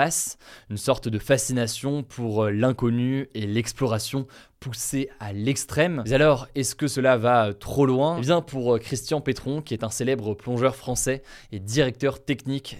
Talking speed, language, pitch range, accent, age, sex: 155 wpm, French, 115-140 Hz, French, 20-39, male